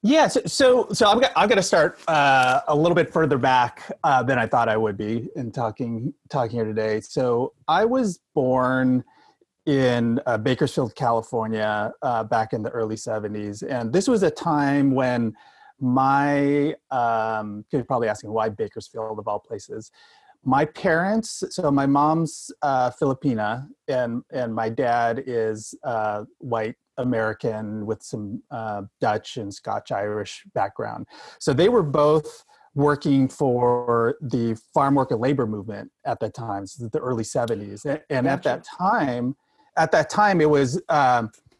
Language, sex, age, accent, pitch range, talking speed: English, male, 30-49, American, 115-150 Hz, 155 wpm